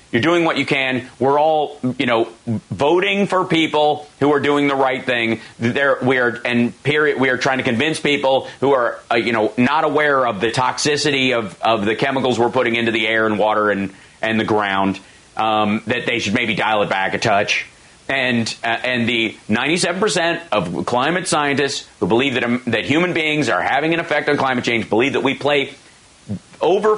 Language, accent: English, American